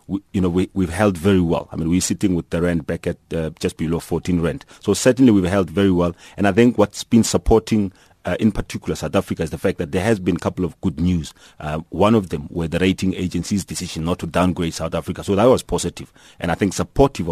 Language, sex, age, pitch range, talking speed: English, male, 40-59, 85-105 Hz, 255 wpm